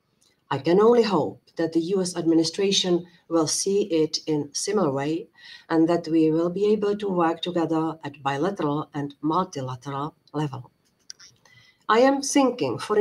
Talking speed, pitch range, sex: 150 wpm, 155-200 Hz, female